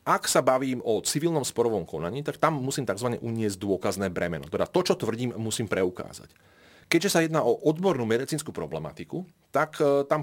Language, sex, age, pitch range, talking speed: Slovak, male, 30-49, 105-140 Hz, 170 wpm